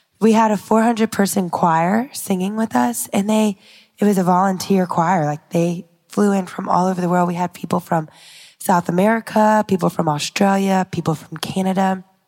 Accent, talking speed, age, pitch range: American, 180 wpm, 20-39, 175-205 Hz